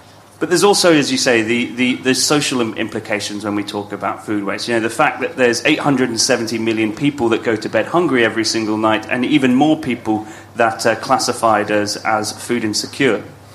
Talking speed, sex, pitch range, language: 195 wpm, male, 110-135 Hz, English